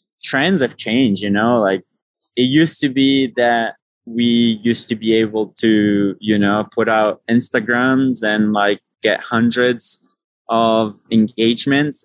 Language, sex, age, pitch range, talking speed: English, male, 20-39, 95-115 Hz, 140 wpm